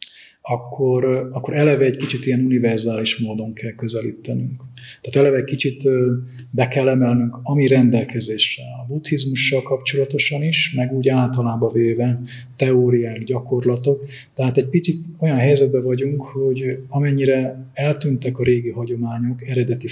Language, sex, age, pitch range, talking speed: Hungarian, male, 30-49, 120-140 Hz, 125 wpm